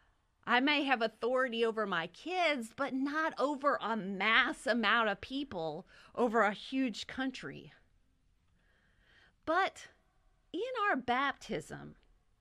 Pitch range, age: 175-275 Hz, 40-59